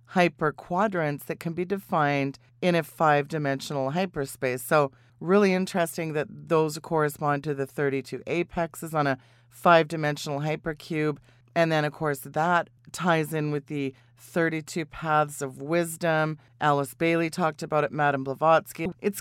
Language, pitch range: English, 145-175 Hz